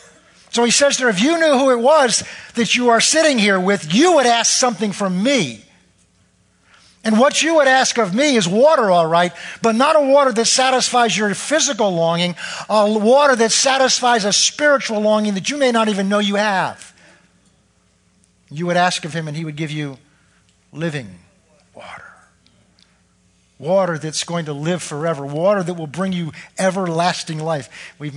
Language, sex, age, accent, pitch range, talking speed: English, male, 50-69, American, 145-205 Hz, 175 wpm